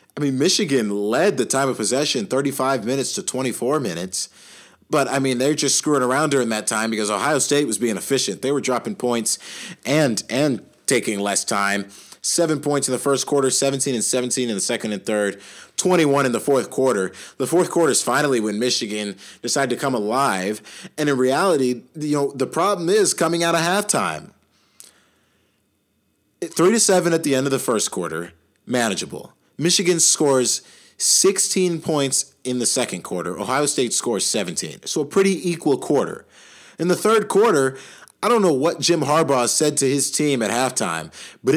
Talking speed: 180 wpm